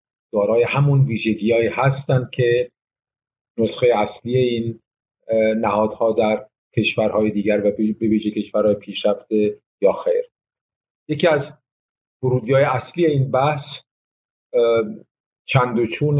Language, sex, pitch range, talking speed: Persian, male, 105-125 Hz, 95 wpm